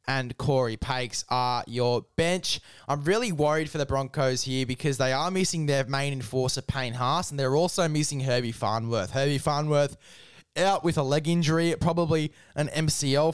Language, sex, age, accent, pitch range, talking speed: English, male, 20-39, Australian, 135-160 Hz, 170 wpm